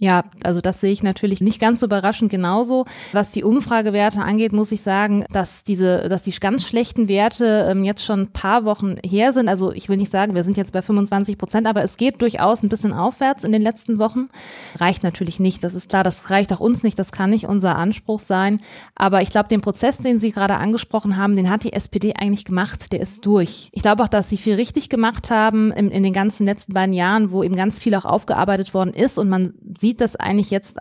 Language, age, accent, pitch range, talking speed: German, 20-39, German, 190-220 Hz, 235 wpm